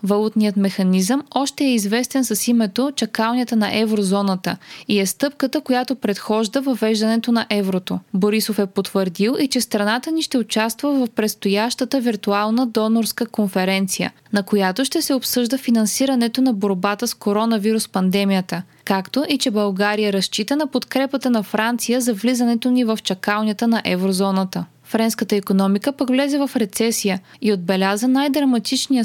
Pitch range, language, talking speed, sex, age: 200-250 Hz, Bulgarian, 140 wpm, female, 20-39